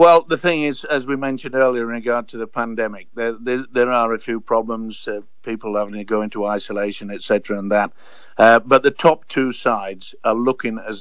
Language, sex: English, male